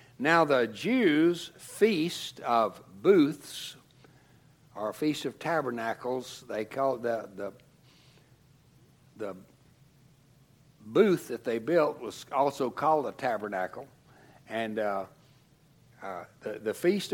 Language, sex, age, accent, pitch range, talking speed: English, male, 60-79, American, 130-180 Hz, 100 wpm